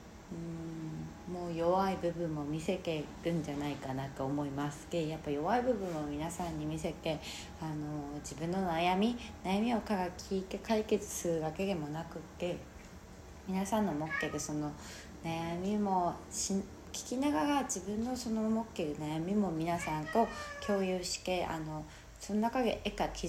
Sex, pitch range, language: female, 155-215 Hz, Japanese